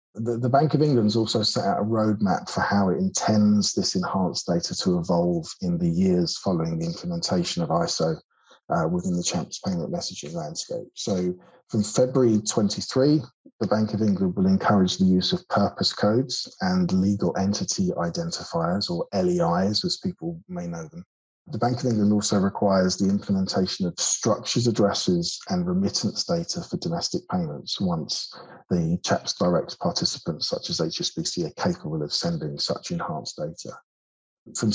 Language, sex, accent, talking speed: English, male, British, 160 wpm